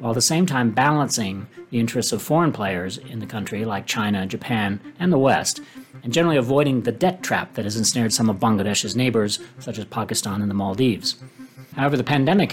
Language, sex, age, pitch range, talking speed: English, male, 40-59, 110-130 Hz, 200 wpm